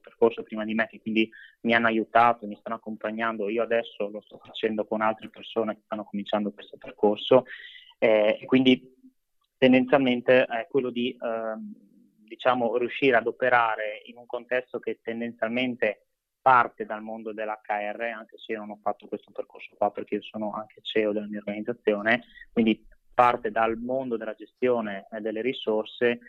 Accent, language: native, Italian